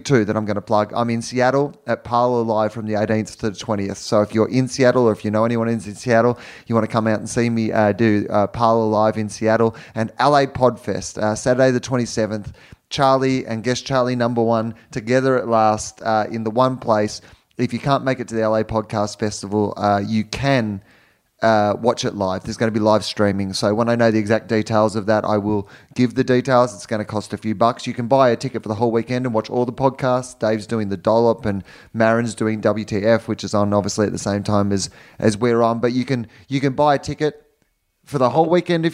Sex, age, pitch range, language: male, 30-49, 105-120 Hz, English